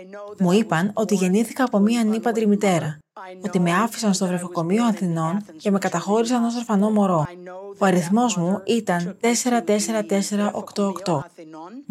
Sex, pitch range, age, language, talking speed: female, 180-220 Hz, 30-49, Greek, 125 wpm